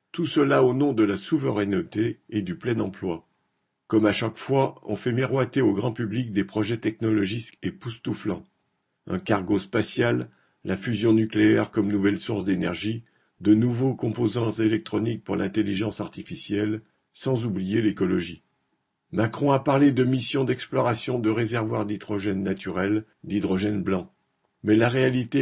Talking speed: 140 wpm